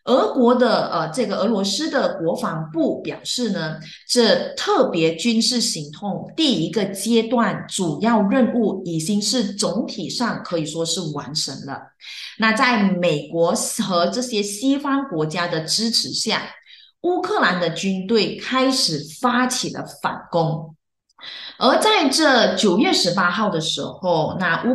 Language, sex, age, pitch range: Chinese, female, 20-39, 175-255 Hz